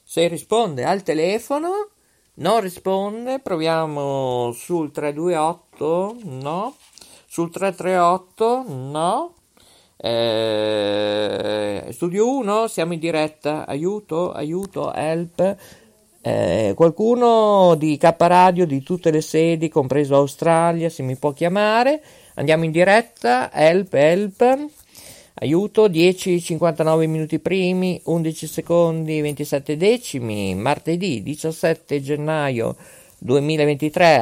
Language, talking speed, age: Italian, 95 wpm, 50-69